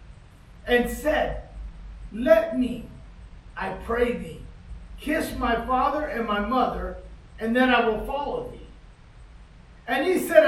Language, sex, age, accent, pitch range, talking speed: English, male, 50-69, American, 200-260 Hz, 125 wpm